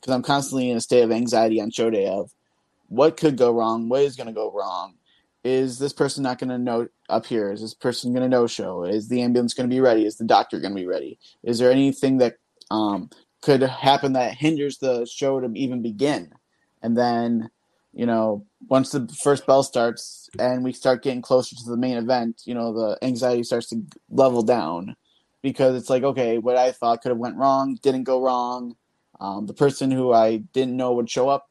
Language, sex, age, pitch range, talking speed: English, male, 20-39, 115-135 Hz, 220 wpm